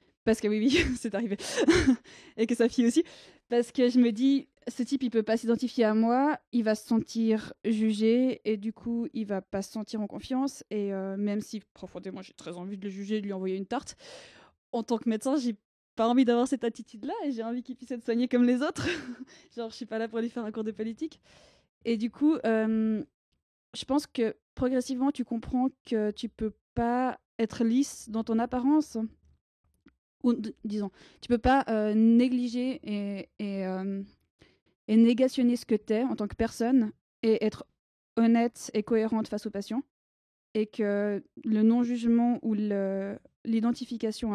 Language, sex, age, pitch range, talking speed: French, female, 20-39, 210-245 Hz, 200 wpm